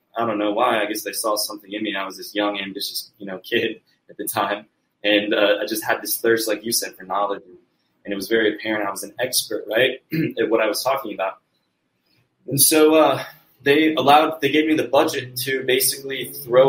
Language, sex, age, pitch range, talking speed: English, male, 20-39, 105-140 Hz, 225 wpm